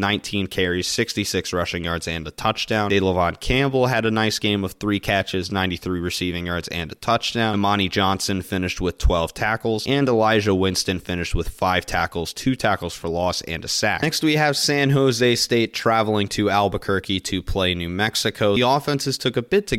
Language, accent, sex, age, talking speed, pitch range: English, American, male, 20-39, 190 wpm, 90-115 Hz